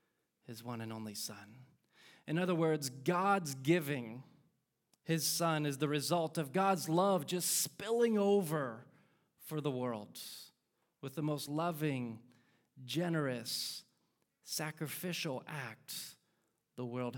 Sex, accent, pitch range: male, American, 125-160 Hz